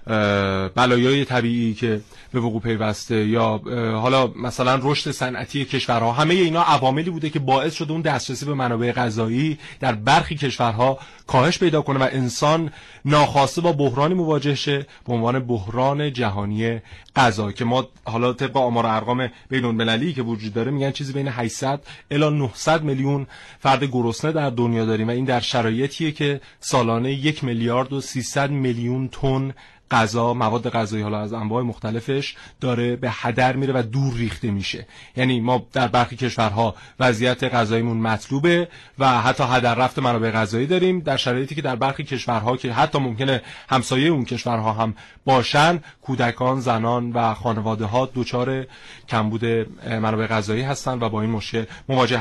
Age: 30-49